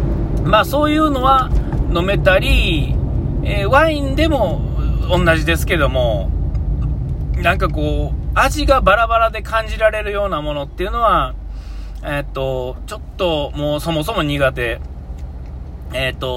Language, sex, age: Japanese, male, 40-59